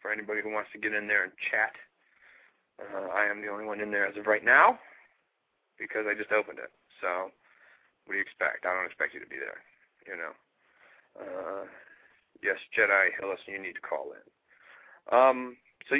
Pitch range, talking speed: 105-125 Hz, 190 wpm